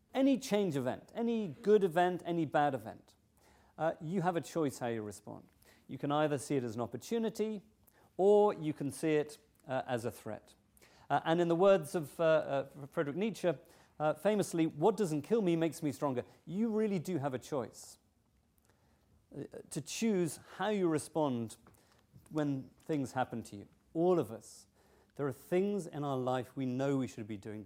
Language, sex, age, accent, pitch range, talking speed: English, male, 40-59, British, 115-175 Hz, 180 wpm